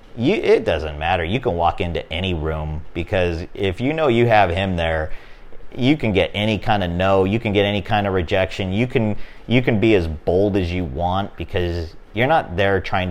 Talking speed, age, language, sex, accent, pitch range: 215 wpm, 40-59, English, male, American, 85-100 Hz